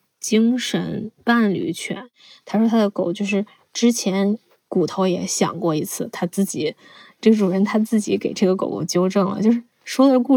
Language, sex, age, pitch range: Chinese, female, 20-39, 190-225 Hz